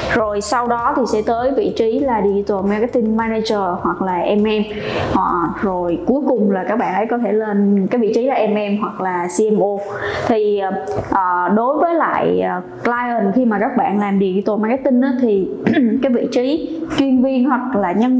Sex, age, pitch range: female, 20-39, 200-245 Hz